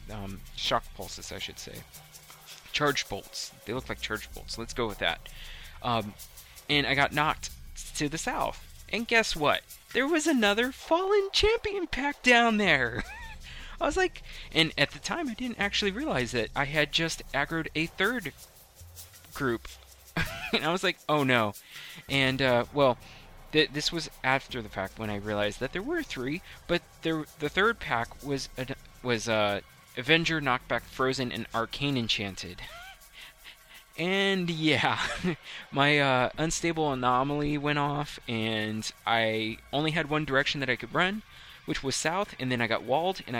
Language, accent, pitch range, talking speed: English, American, 110-160 Hz, 165 wpm